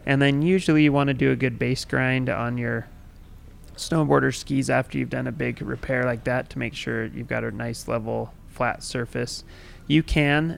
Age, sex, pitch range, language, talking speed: 20-39, male, 110-130 Hz, English, 200 wpm